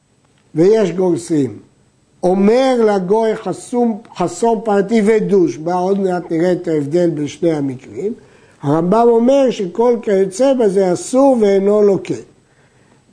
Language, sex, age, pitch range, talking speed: Hebrew, male, 60-79, 170-225 Hz, 115 wpm